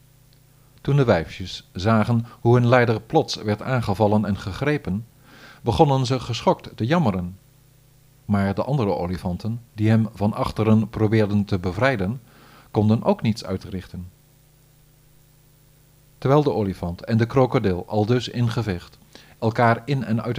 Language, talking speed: Dutch, 130 wpm